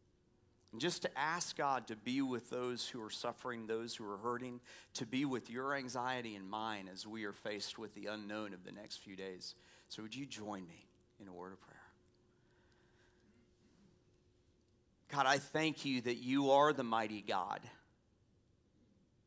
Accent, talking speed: American, 170 wpm